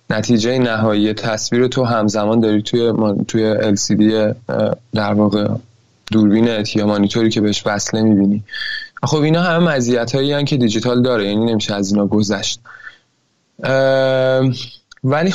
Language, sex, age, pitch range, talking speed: Persian, male, 20-39, 110-130 Hz, 120 wpm